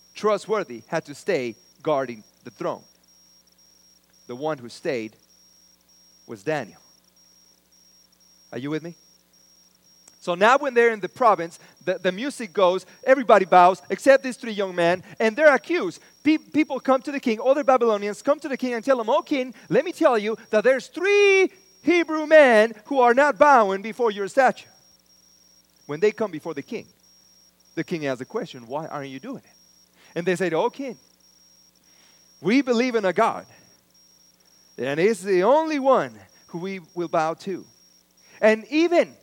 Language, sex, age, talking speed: English, male, 30-49, 165 wpm